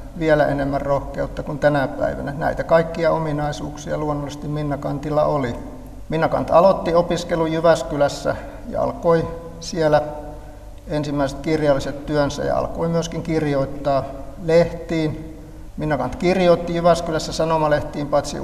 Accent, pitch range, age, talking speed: native, 145-160 Hz, 60-79, 105 wpm